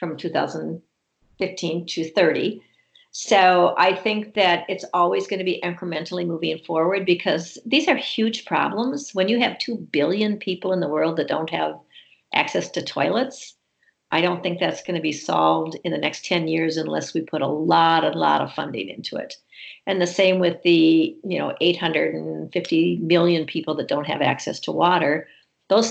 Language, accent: English, American